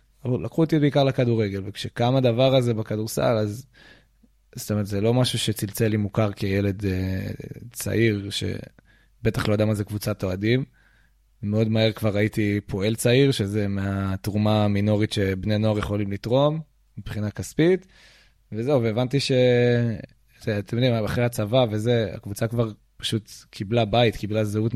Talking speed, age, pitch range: 140 wpm, 20-39, 105-125 Hz